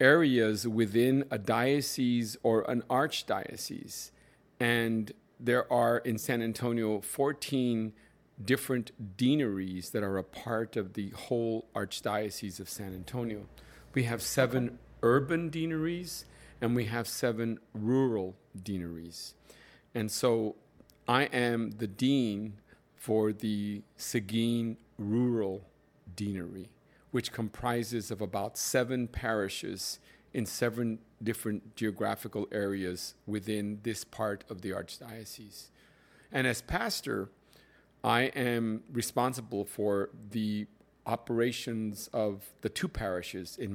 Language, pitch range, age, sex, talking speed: English, 105-120 Hz, 50-69, male, 110 wpm